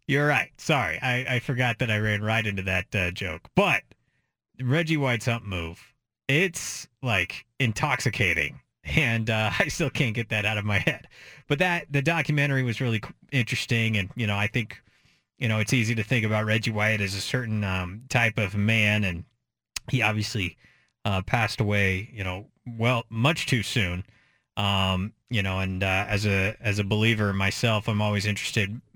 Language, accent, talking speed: English, American, 180 wpm